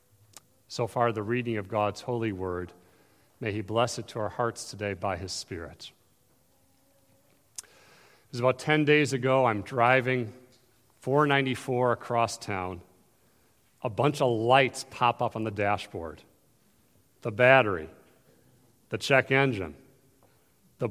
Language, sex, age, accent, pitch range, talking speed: English, male, 40-59, American, 115-150 Hz, 130 wpm